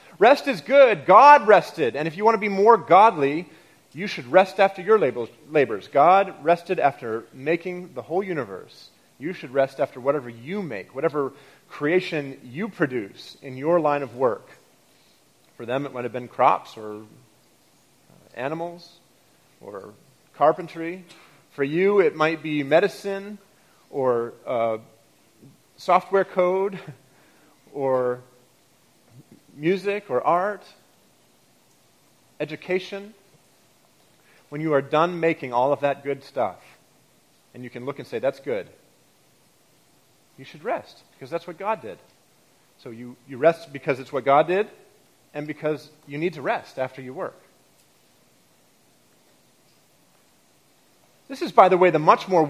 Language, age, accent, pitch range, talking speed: English, 30-49, American, 135-185 Hz, 135 wpm